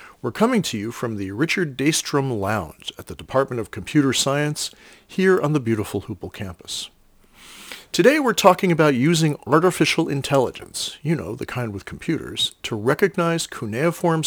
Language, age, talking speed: English, 40-59, 155 wpm